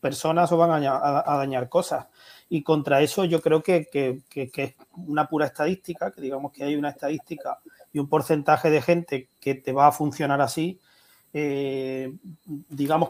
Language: Spanish